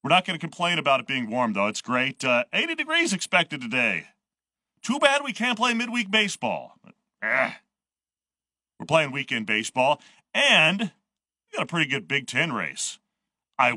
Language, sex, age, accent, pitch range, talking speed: English, male, 40-59, American, 125-175 Hz, 170 wpm